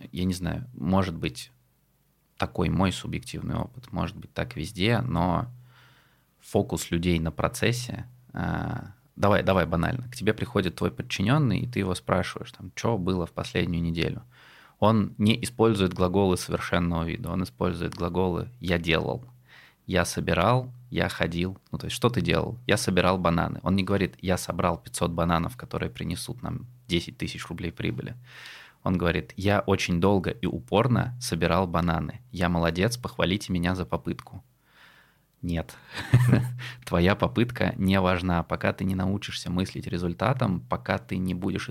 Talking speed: 150 wpm